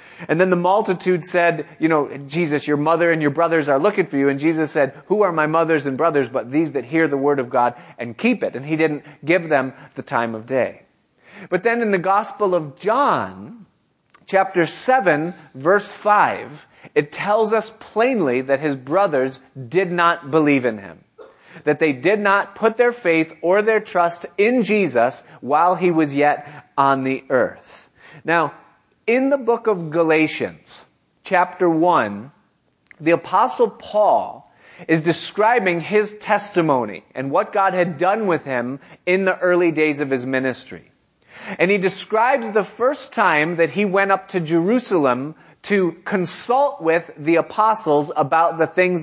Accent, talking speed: American, 170 wpm